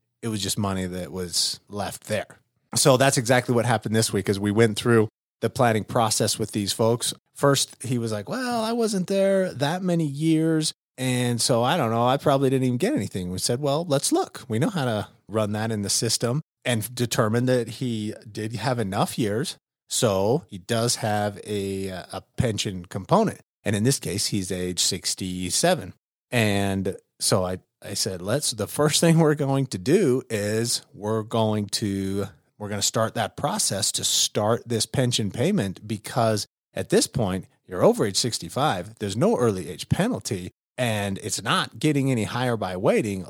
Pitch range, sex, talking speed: 100-130 Hz, male, 185 wpm